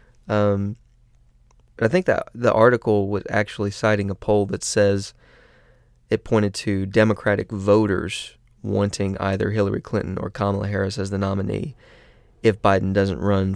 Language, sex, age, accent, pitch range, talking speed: English, male, 20-39, American, 100-110 Hz, 140 wpm